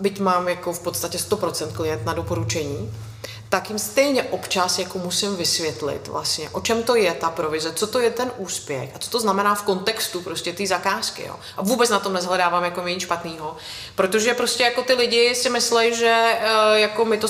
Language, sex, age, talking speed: Czech, female, 30-49, 200 wpm